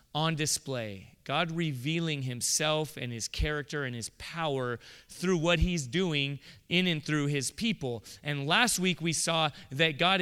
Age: 30-49